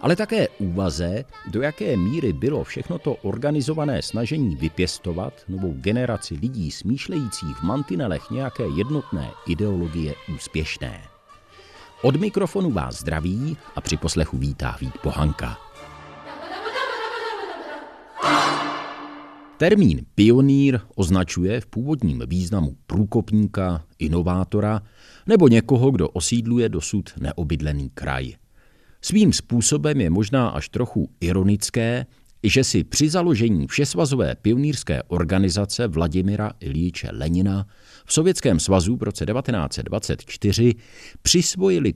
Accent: native